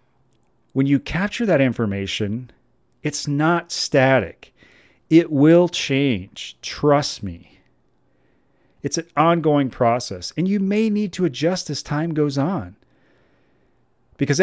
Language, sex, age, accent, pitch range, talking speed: English, male, 40-59, American, 120-170 Hz, 115 wpm